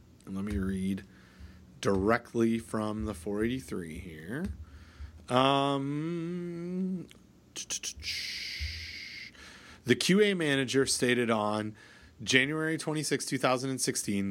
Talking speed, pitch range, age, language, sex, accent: 70 wpm, 100-135 Hz, 30-49, English, male, American